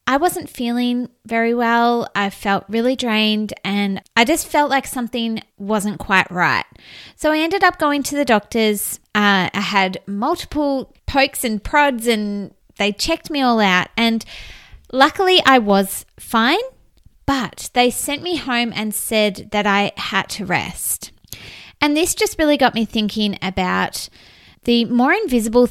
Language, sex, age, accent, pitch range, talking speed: English, female, 20-39, Australian, 200-265 Hz, 155 wpm